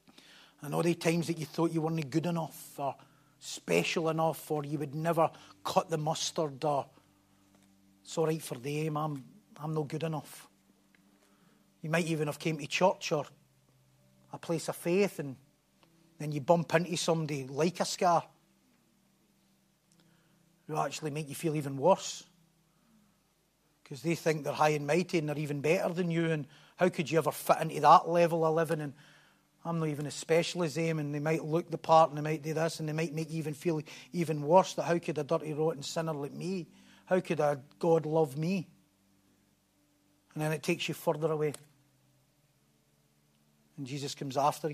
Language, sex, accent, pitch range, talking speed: English, male, British, 145-165 Hz, 180 wpm